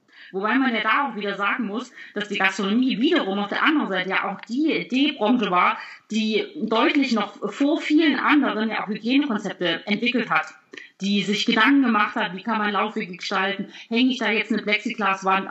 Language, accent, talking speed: German, German, 180 wpm